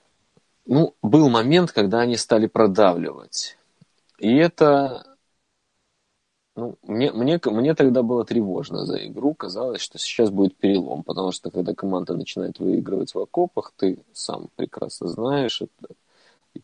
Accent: native